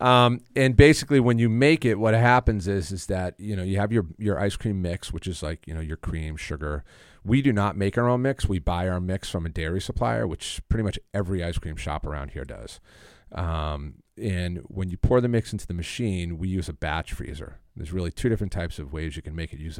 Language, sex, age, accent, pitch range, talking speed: English, male, 40-59, American, 80-105 Hz, 245 wpm